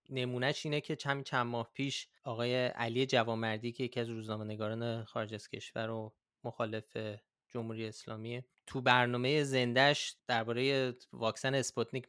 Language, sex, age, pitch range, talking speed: Persian, male, 20-39, 115-135 Hz, 130 wpm